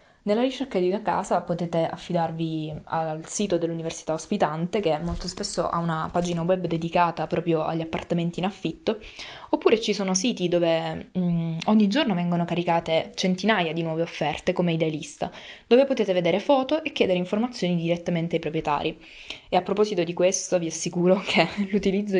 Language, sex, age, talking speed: Italian, female, 20-39, 160 wpm